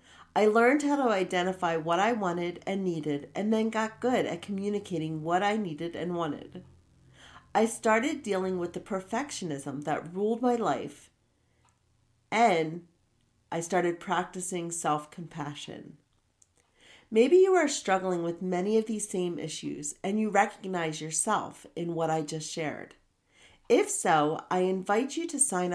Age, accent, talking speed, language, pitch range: 40-59, American, 145 wpm, English, 165-220 Hz